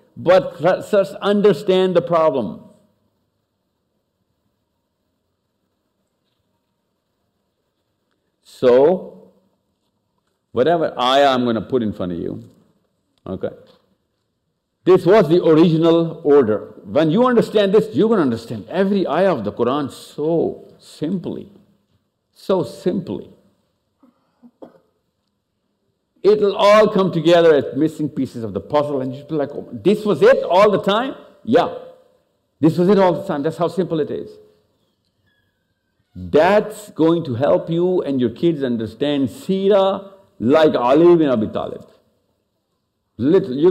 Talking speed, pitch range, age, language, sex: 120 wpm, 135-200 Hz, 60-79, English, male